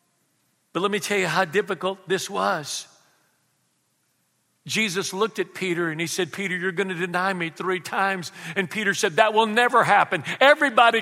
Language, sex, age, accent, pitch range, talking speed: English, male, 50-69, American, 140-185 Hz, 175 wpm